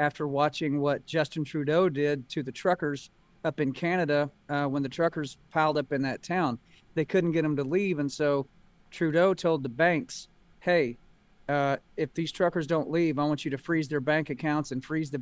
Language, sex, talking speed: English, male, 200 wpm